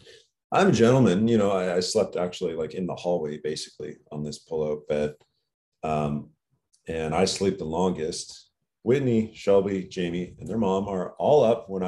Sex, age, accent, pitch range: male, 40-59, American, 85-115 Hz